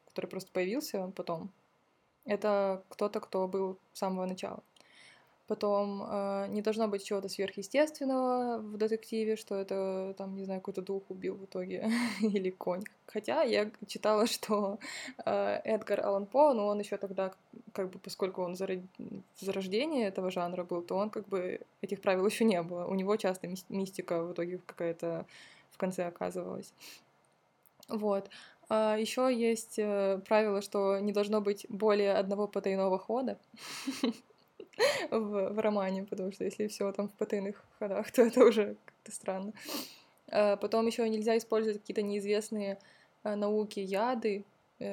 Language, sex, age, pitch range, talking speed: Russian, female, 20-39, 190-215 Hz, 150 wpm